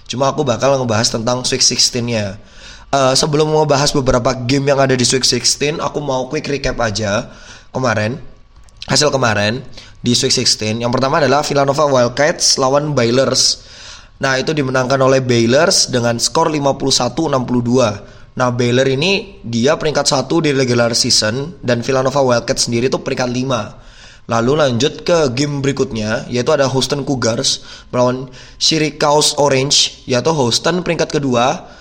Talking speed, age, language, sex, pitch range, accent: 145 wpm, 20-39, Indonesian, male, 125-140 Hz, native